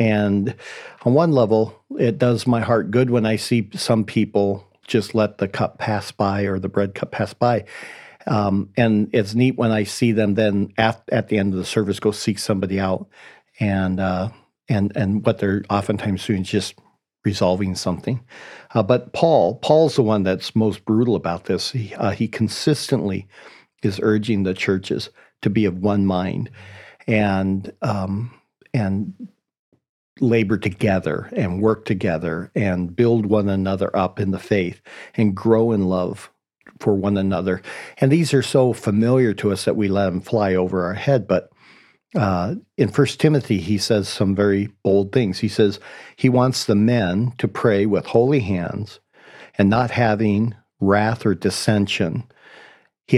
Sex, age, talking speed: male, 50-69, 170 wpm